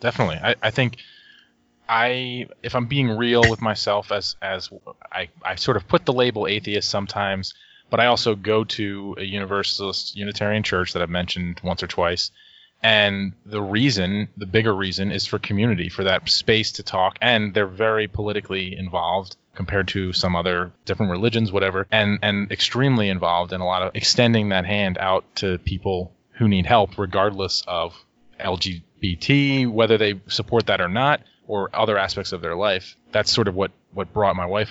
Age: 20-39